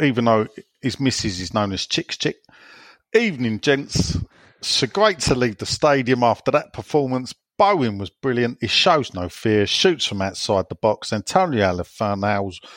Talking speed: 160 wpm